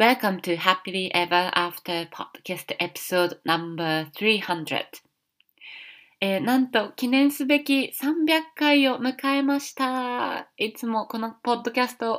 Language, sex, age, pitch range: Japanese, female, 20-39, 155-215 Hz